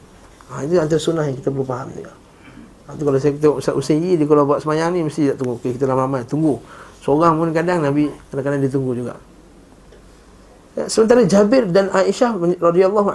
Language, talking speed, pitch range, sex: Malay, 195 wpm, 140-175 Hz, male